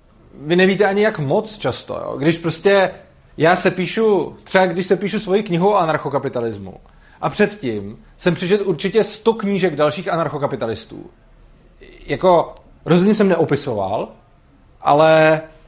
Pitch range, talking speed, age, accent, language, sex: 140-185 Hz, 130 wpm, 30-49, native, Czech, male